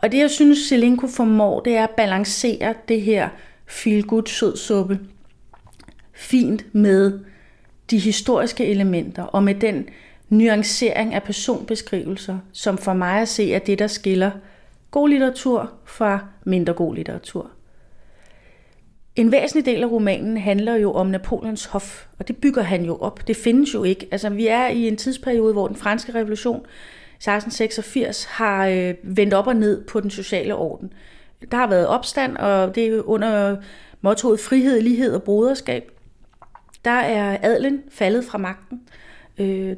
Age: 30-49